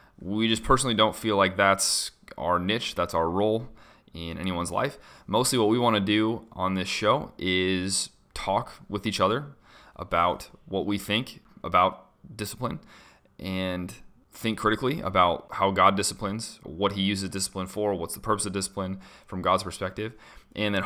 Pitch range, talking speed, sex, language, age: 95-110 Hz, 165 wpm, male, English, 30-49